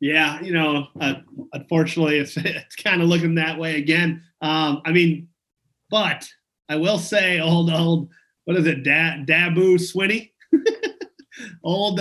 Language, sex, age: English, male, 30-49